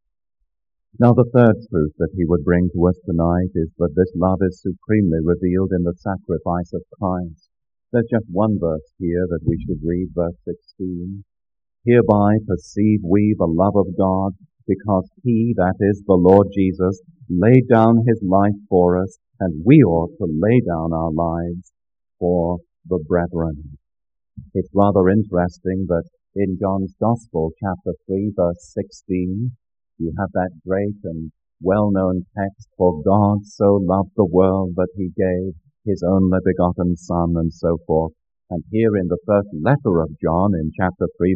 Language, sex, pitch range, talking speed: English, male, 85-100 Hz, 160 wpm